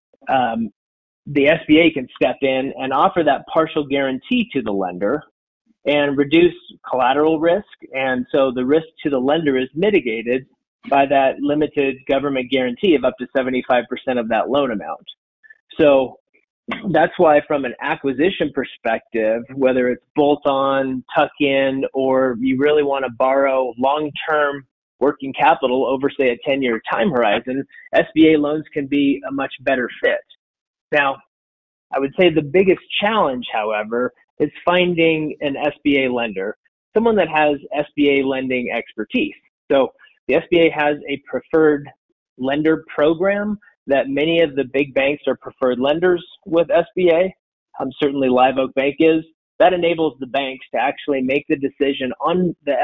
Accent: American